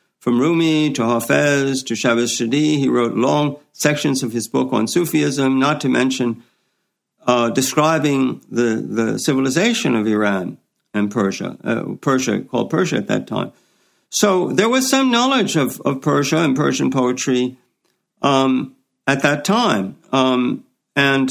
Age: 60-79